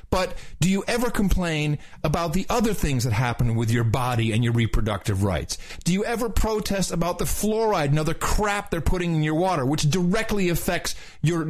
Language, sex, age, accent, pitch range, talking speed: English, male, 40-59, American, 175-240 Hz, 195 wpm